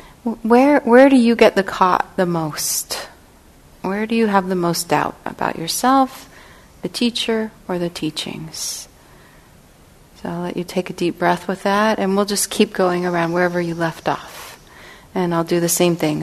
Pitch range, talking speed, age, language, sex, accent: 170-210 Hz, 180 wpm, 30-49, English, female, American